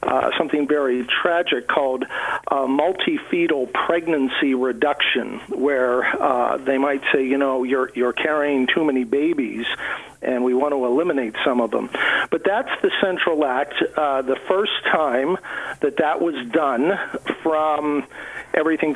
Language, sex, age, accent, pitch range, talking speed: English, male, 50-69, American, 140-190 Hz, 140 wpm